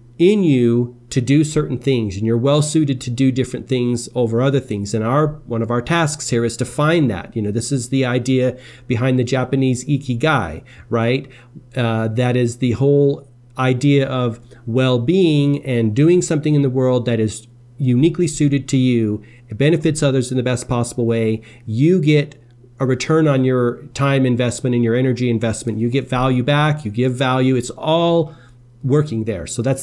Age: 40-59